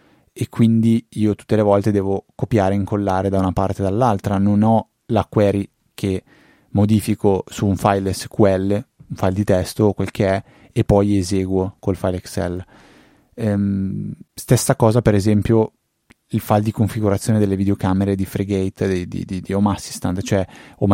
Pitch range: 100-110 Hz